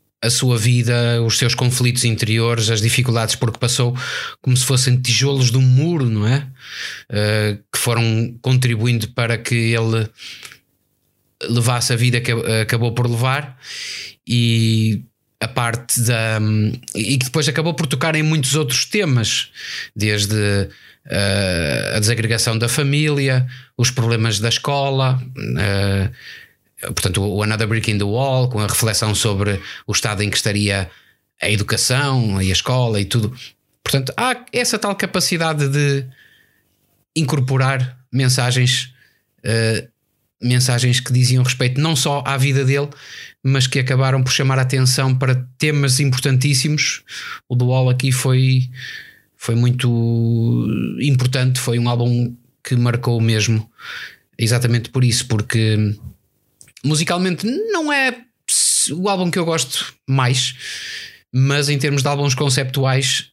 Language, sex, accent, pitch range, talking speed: Portuguese, male, Portuguese, 115-135 Hz, 135 wpm